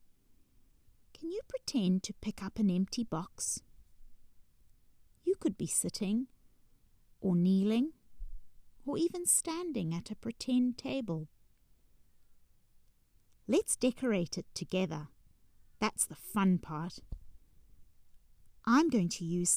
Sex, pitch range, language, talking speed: female, 170-245 Hz, English, 105 wpm